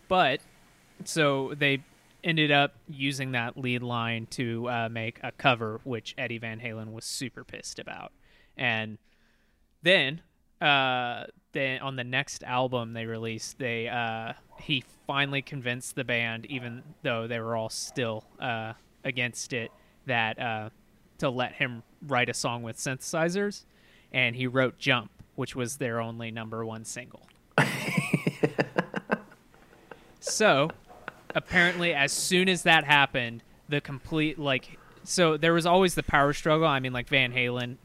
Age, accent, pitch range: 20-39, American, 120-150 Hz